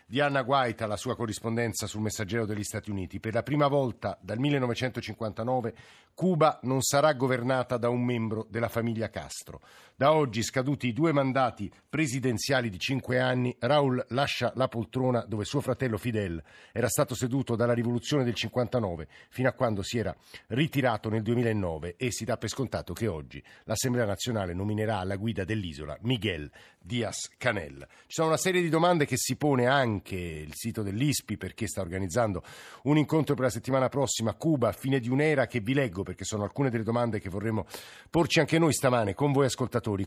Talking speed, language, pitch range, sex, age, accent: 180 wpm, Italian, 110-135 Hz, male, 50-69, native